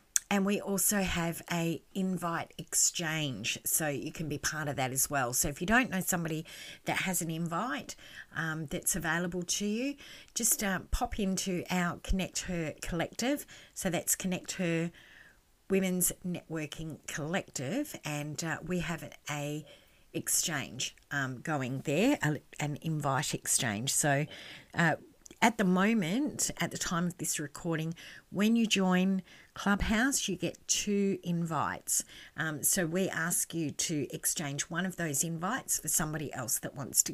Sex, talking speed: female, 150 wpm